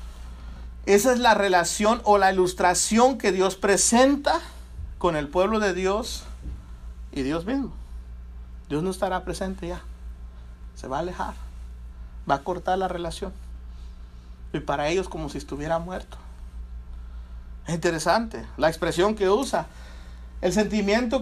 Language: Spanish